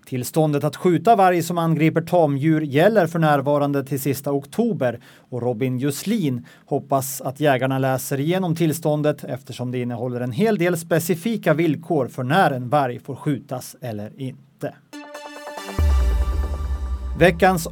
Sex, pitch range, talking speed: male, 130-175 Hz, 130 wpm